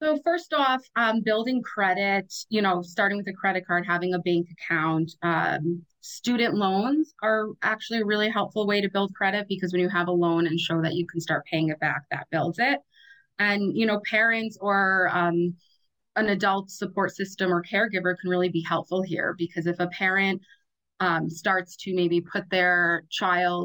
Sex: female